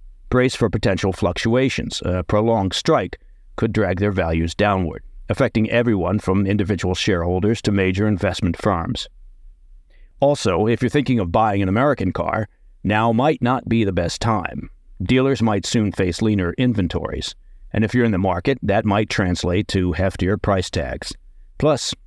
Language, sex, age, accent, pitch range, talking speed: English, male, 50-69, American, 90-115 Hz, 155 wpm